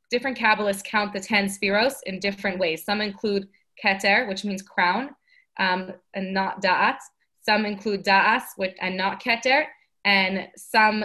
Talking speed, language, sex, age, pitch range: 145 wpm, English, female, 20-39, 195-235 Hz